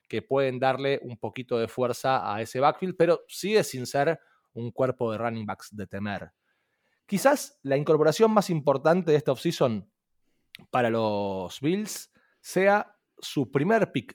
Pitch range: 115-165 Hz